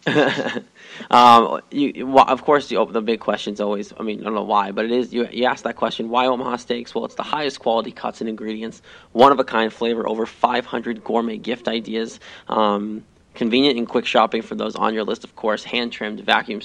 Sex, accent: male, American